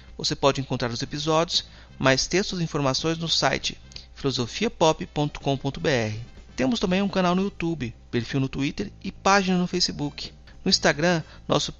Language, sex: Portuguese, male